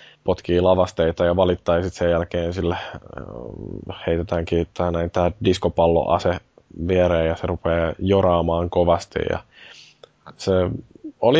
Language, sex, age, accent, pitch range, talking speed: Finnish, male, 20-39, native, 85-95 Hz, 105 wpm